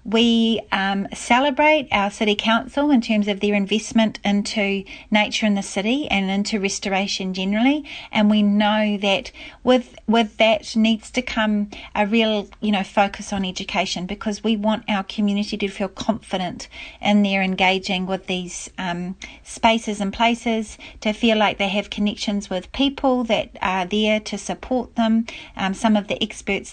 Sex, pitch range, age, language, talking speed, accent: female, 195-230 Hz, 40-59, English, 165 wpm, Australian